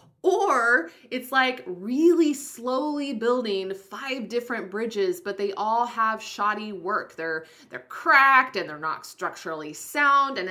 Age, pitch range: 20-39, 190-255 Hz